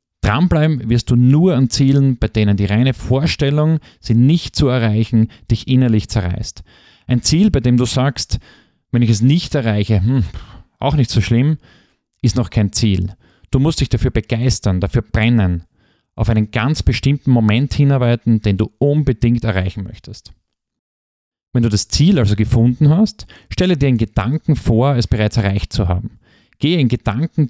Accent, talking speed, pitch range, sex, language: German, 165 wpm, 105-130 Hz, male, German